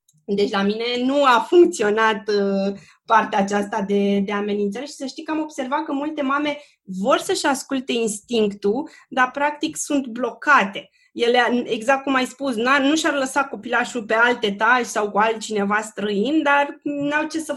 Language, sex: Romanian, female